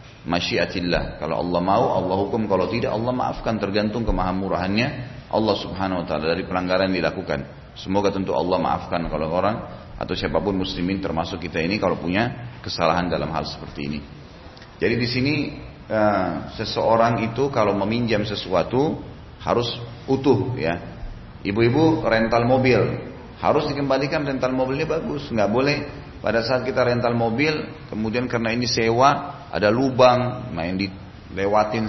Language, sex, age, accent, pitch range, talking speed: Indonesian, male, 30-49, native, 95-125 Hz, 135 wpm